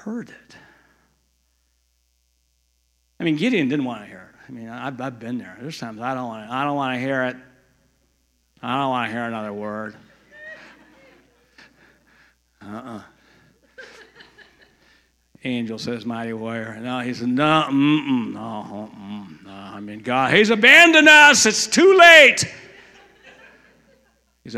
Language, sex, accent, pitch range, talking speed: English, male, American, 110-150 Hz, 135 wpm